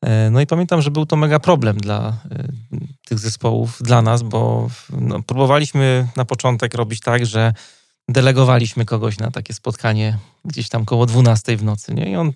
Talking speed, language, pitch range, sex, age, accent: 160 wpm, Polish, 115-140 Hz, male, 30-49, native